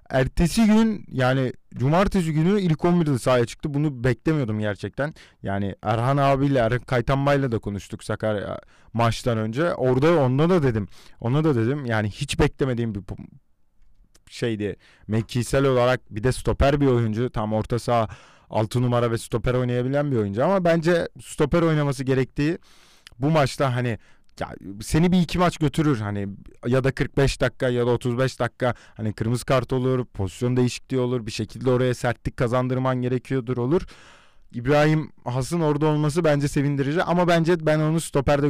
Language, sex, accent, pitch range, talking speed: Turkish, male, native, 110-145 Hz, 155 wpm